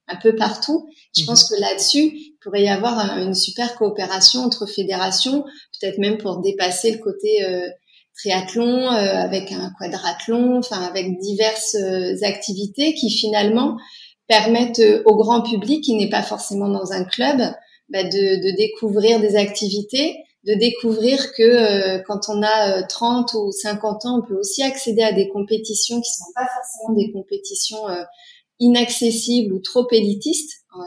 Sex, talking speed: female, 160 wpm